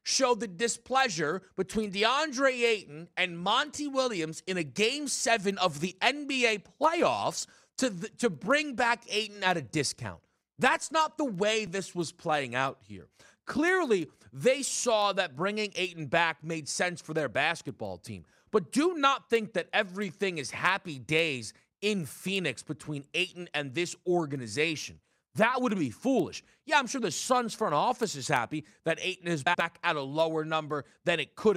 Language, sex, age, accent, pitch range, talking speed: English, male, 30-49, American, 160-230 Hz, 165 wpm